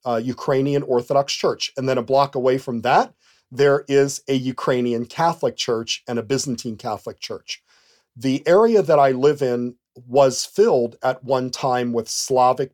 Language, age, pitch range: English, 40-59, 125-150 Hz